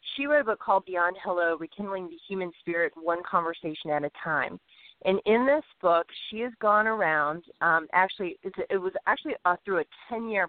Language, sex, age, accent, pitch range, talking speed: English, female, 30-49, American, 175-210 Hz, 190 wpm